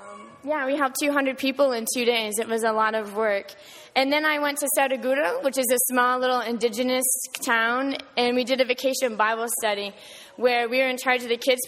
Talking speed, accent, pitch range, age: 215 wpm, American, 225-255 Hz, 20-39